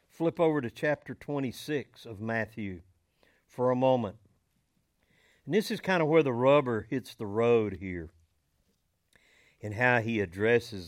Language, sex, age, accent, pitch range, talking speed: English, male, 50-69, American, 110-145 Hz, 145 wpm